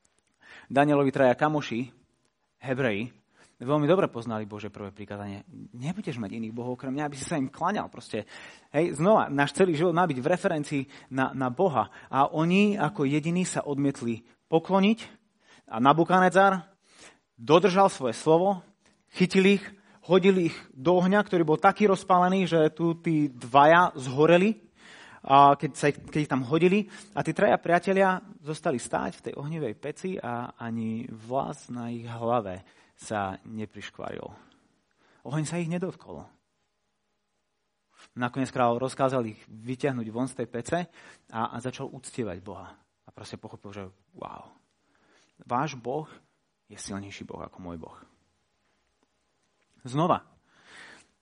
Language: Slovak